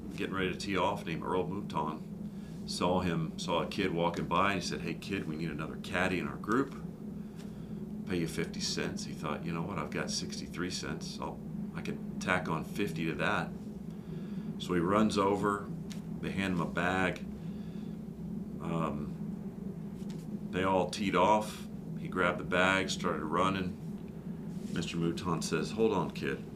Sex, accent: male, American